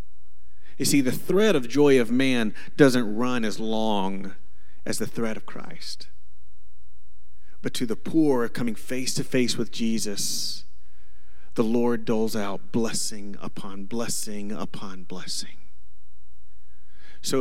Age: 40-59